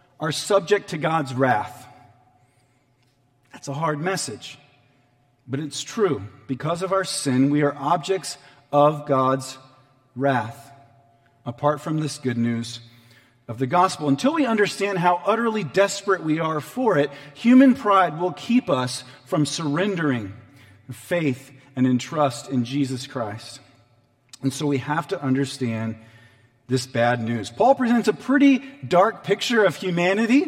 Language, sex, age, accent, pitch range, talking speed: English, male, 40-59, American, 130-185 Hz, 140 wpm